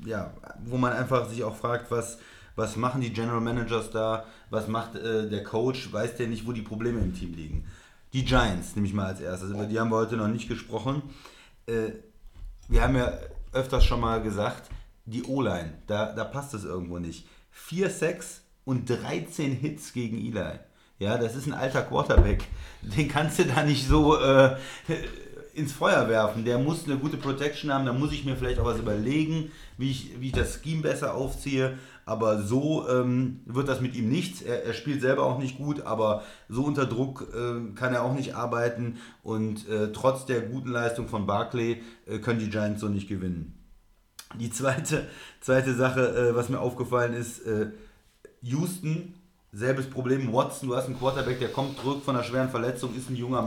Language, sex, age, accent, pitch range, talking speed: German, male, 30-49, German, 110-135 Hz, 195 wpm